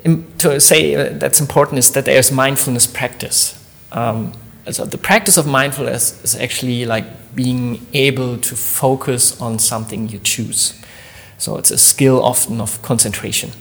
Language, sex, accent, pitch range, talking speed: English, male, German, 120-160 Hz, 145 wpm